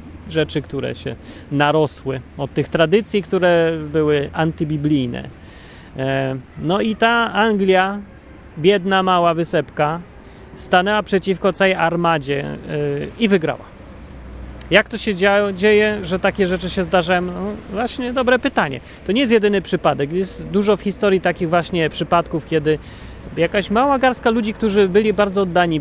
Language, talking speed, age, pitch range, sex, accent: Polish, 135 wpm, 30-49, 145-200 Hz, male, native